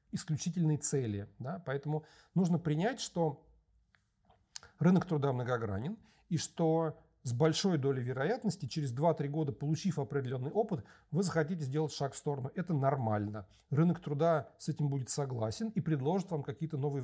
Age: 40-59